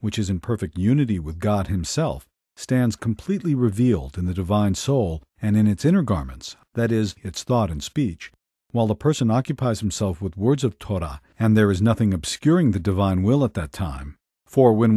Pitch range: 95-125 Hz